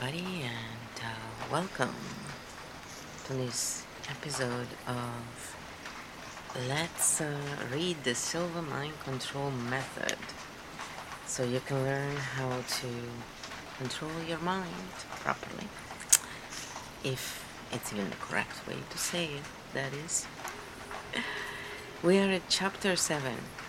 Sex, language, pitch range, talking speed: female, English, 130-165 Hz, 105 wpm